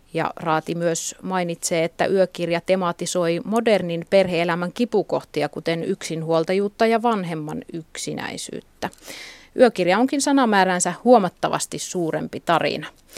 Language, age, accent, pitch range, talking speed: Finnish, 30-49, native, 170-215 Hz, 95 wpm